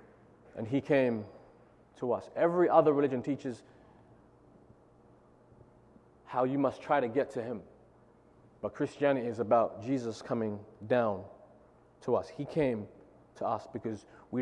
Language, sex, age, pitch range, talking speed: English, male, 30-49, 110-145 Hz, 135 wpm